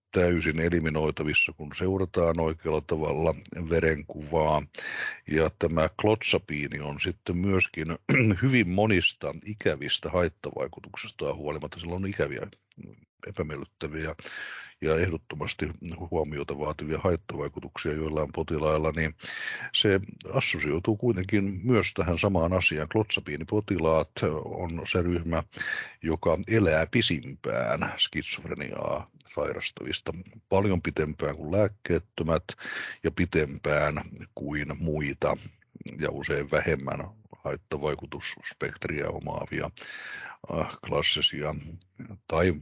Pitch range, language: 75-95 Hz, Finnish